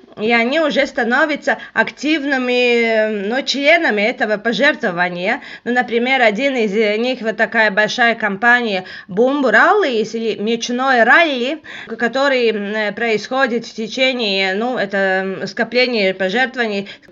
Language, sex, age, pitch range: Russian, female, 20-39, 210-275 Hz